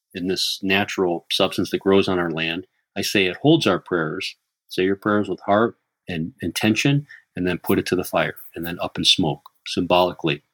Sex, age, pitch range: male, 40-59, 90-120 Hz